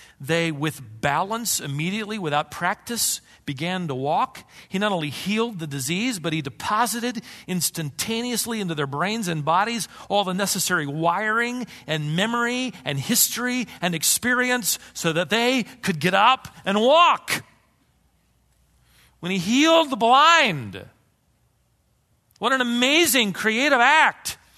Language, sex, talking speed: English, male, 125 wpm